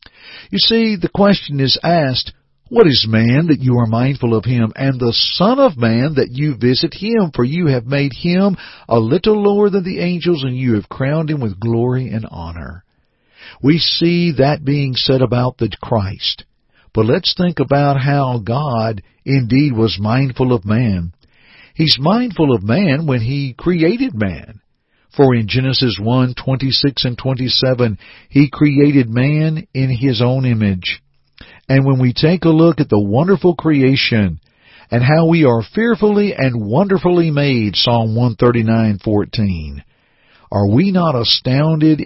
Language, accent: English, American